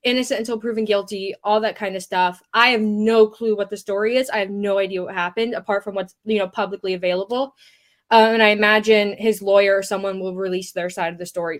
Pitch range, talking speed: 195-230 Hz, 235 wpm